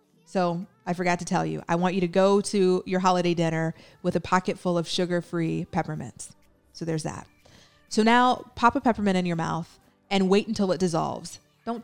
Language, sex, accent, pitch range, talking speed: English, female, American, 170-210 Hz, 200 wpm